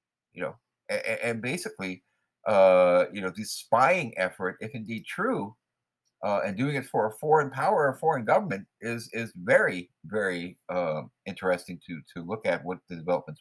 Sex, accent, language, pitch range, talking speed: male, American, English, 85-125 Hz, 170 wpm